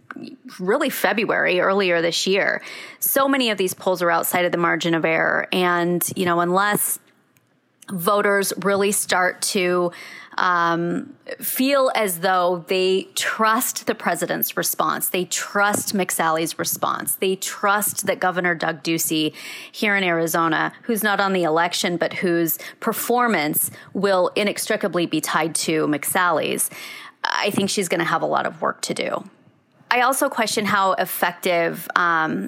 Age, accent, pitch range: 30-49, American, 175-220 Hz